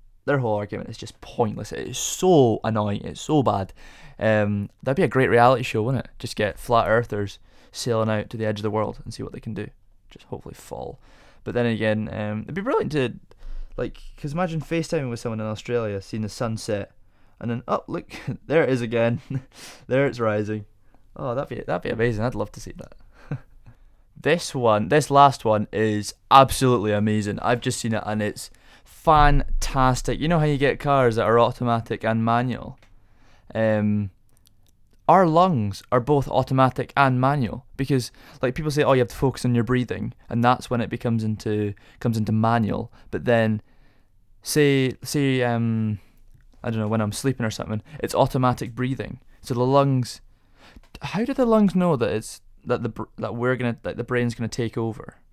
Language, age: English, 20-39